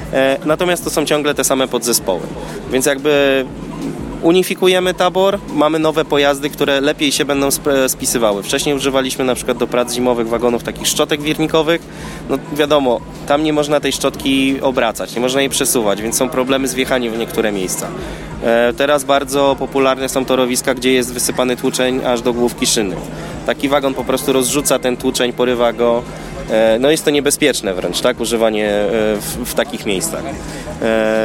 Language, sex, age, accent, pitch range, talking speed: Polish, male, 20-39, native, 125-150 Hz, 160 wpm